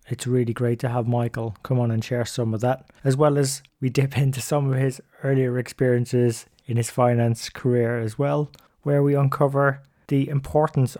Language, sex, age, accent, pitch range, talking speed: English, male, 20-39, British, 115-135 Hz, 190 wpm